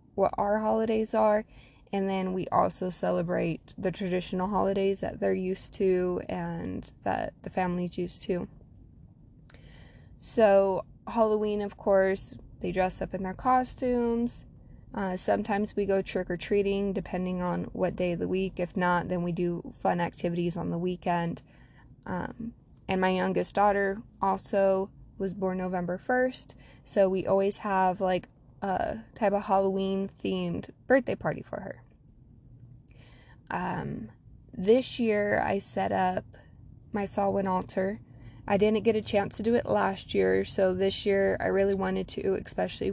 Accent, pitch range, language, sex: American, 180-200 Hz, English, female